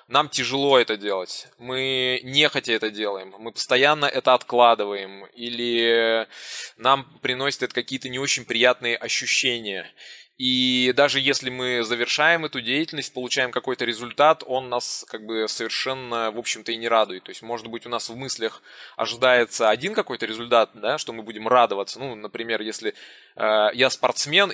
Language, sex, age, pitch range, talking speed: Russian, male, 20-39, 115-130 Hz, 155 wpm